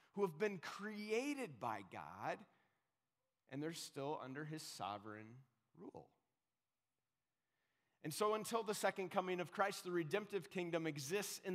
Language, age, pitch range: English, 30-49, 145-195 Hz